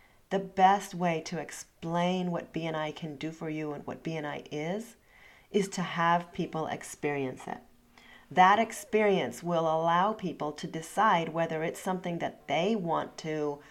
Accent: American